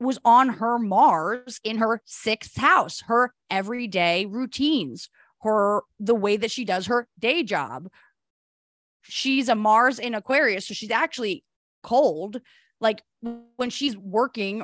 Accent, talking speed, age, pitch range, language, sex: American, 135 wpm, 20-39, 195-245 Hz, English, female